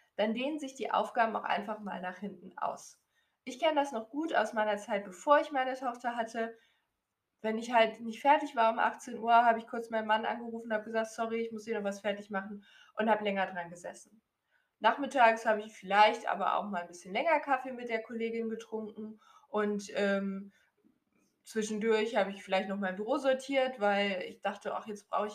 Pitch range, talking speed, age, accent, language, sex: 205-240 Hz, 205 wpm, 20-39, German, German, female